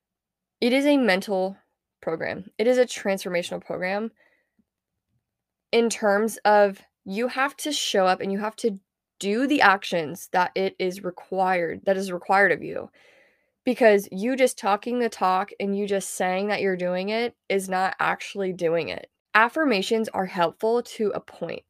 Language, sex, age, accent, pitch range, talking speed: English, female, 20-39, American, 190-230 Hz, 165 wpm